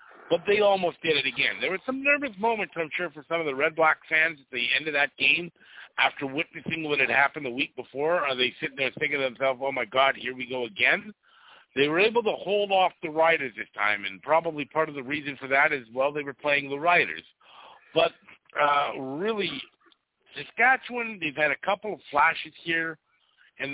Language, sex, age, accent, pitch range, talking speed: English, male, 50-69, American, 135-170 Hz, 215 wpm